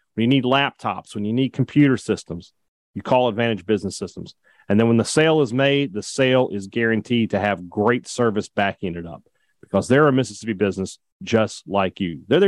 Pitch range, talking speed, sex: 110-150 Hz, 195 wpm, male